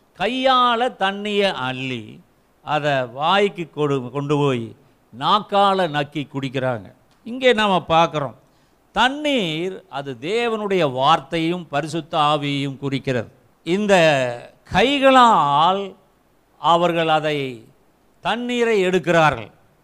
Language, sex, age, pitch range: Tamil, male, 50-69, 150-225 Hz